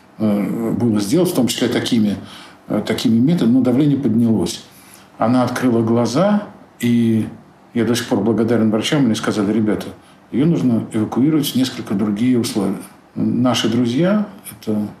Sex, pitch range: male, 110-130 Hz